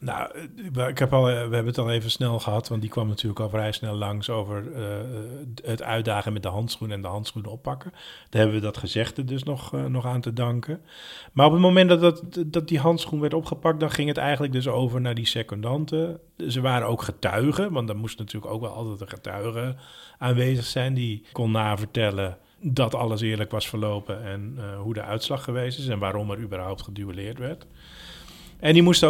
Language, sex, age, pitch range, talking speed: Dutch, male, 40-59, 105-135 Hz, 210 wpm